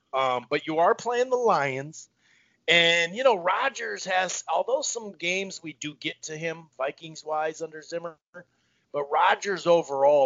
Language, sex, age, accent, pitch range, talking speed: English, male, 40-59, American, 140-185 Hz, 160 wpm